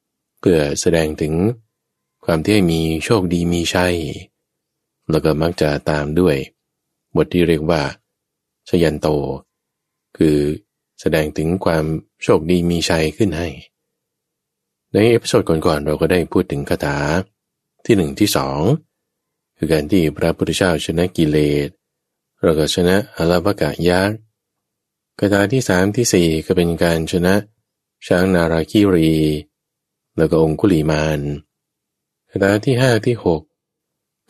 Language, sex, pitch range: Thai, male, 80-100 Hz